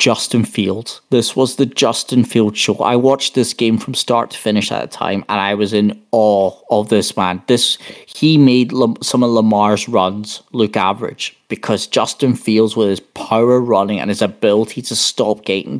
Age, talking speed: 30-49, 185 wpm